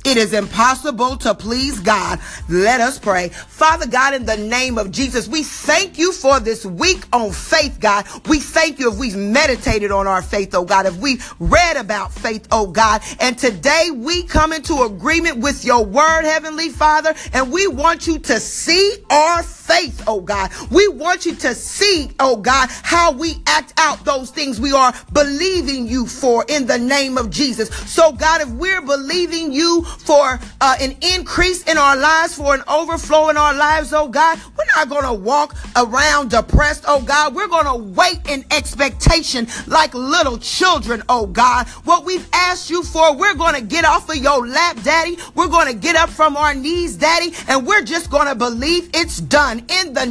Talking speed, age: 195 wpm, 40-59